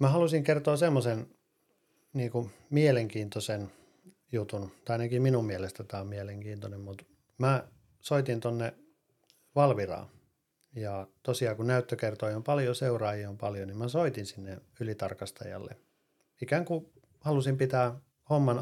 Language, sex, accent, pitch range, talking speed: Finnish, male, native, 105-130 Hz, 130 wpm